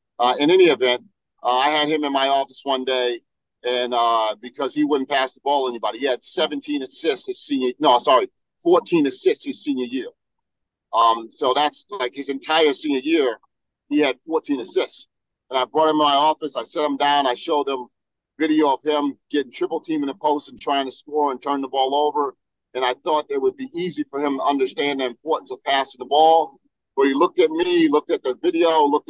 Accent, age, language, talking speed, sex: American, 40-59, English, 225 wpm, male